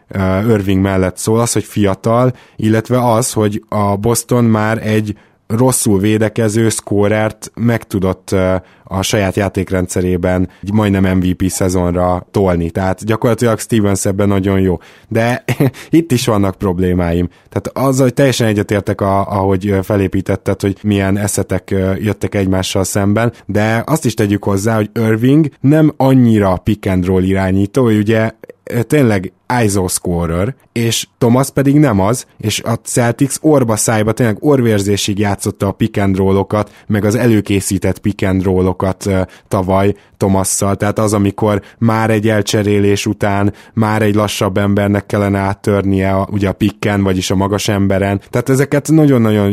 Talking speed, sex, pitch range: 135 wpm, male, 95-115 Hz